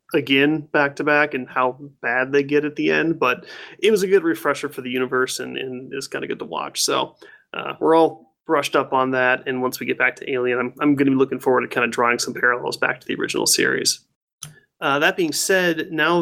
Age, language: 30-49, English